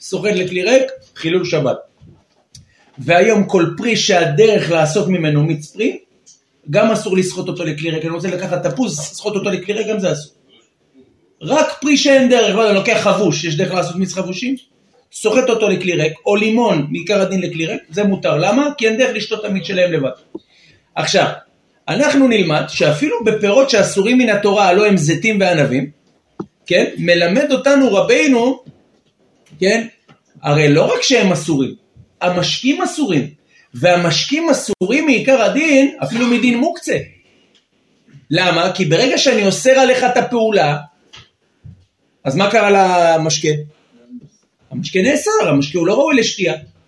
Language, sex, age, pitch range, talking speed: Hebrew, male, 40-59, 170-245 Hz, 135 wpm